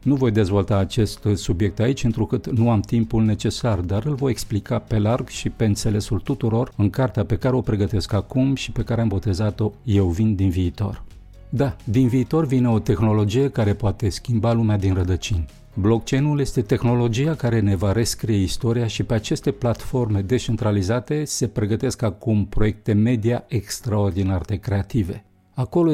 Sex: male